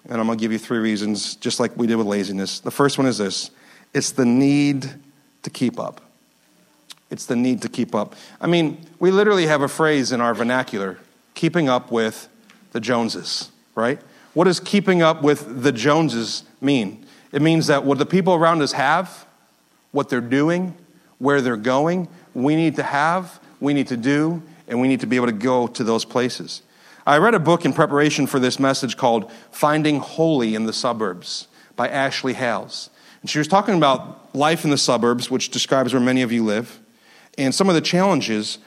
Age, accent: 40-59, American